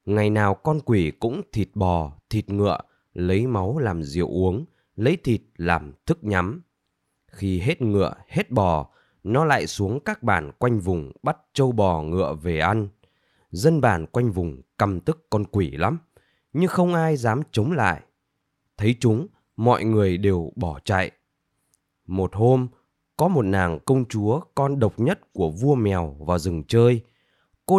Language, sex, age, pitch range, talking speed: Vietnamese, male, 20-39, 90-130 Hz, 165 wpm